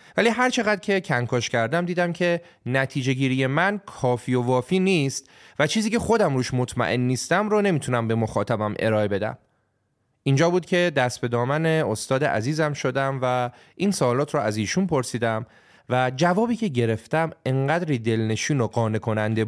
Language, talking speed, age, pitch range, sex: Persian, 155 wpm, 30-49, 115-170 Hz, male